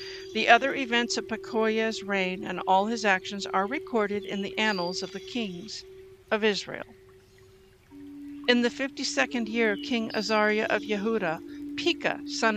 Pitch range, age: 190-260 Hz, 50-69